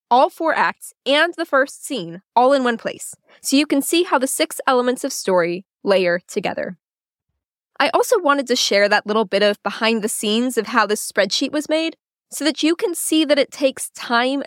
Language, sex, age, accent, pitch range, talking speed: English, female, 10-29, American, 220-300 Hz, 200 wpm